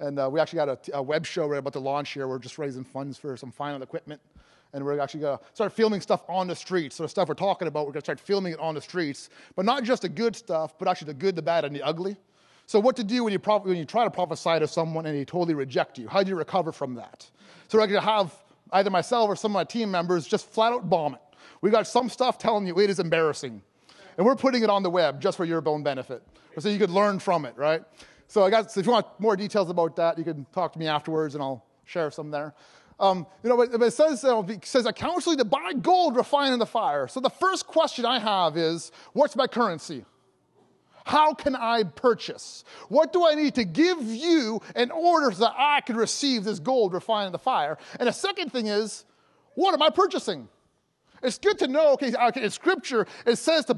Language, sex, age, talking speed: English, male, 30-49, 255 wpm